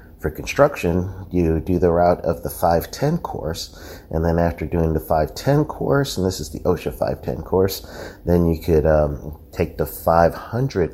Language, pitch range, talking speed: English, 80-90 Hz, 165 wpm